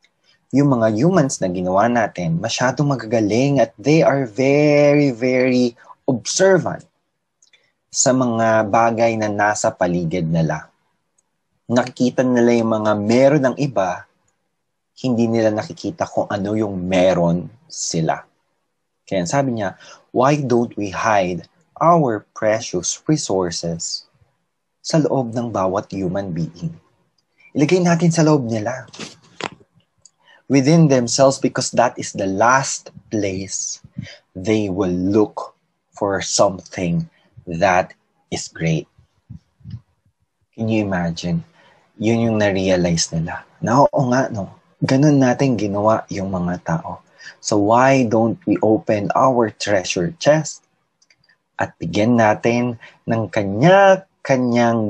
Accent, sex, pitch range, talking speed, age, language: native, male, 100-140 Hz, 110 wpm, 20-39, Filipino